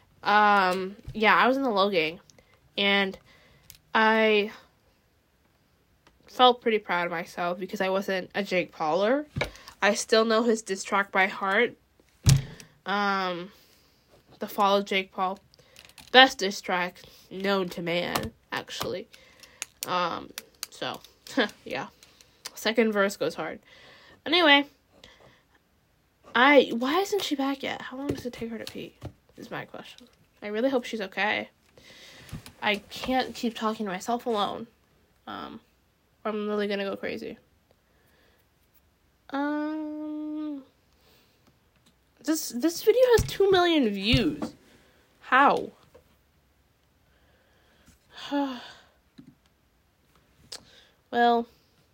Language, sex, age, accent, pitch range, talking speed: English, female, 10-29, American, 195-255 Hz, 110 wpm